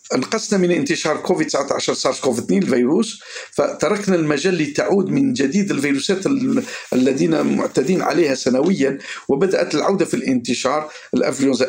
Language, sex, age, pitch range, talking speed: Arabic, male, 50-69, 140-200 Hz, 125 wpm